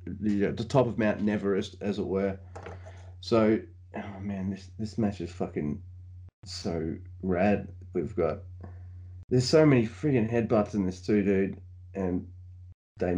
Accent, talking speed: Australian, 140 wpm